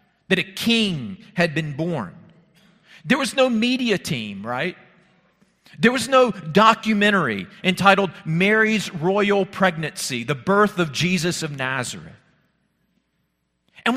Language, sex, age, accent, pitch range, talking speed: English, male, 40-59, American, 165-210 Hz, 115 wpm